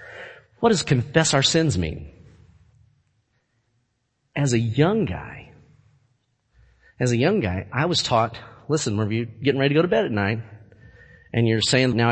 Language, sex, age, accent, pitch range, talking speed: English, male, 40-59, American, 115-160 Hz, 160 wpm